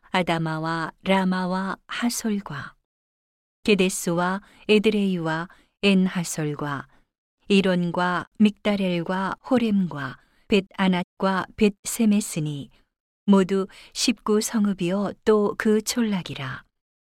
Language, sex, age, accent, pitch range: Korean, female, 40-59, native, 175-210 Hz